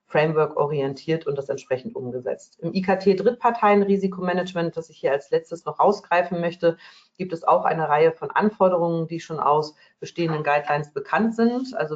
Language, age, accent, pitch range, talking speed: German, 40-59, German, 150-185 Hz, 160 wpm